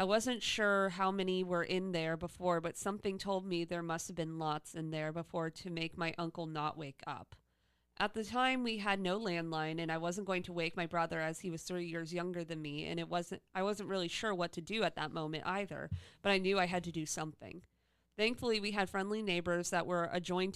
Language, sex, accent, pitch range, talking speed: English, female, American, 165-190 Hz, 235 wpm